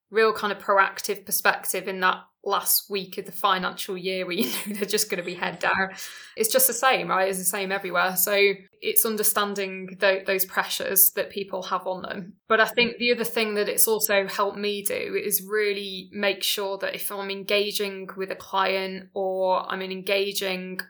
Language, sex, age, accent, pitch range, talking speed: English, female, 10-29, British, 185-205 Hz, 195 wpm